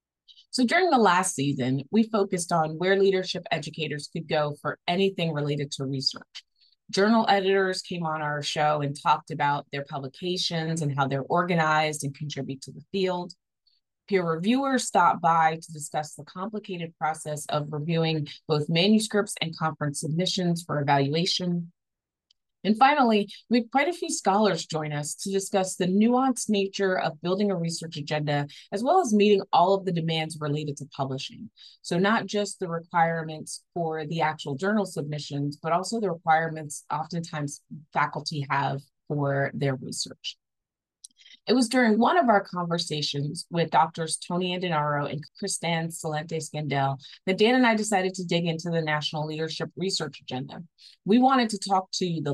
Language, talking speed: English, 160 wpm